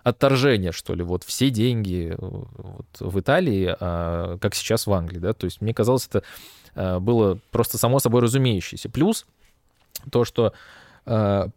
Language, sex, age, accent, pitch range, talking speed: Russian, male, 20-39, native, 105-135 Hz, 155 wpm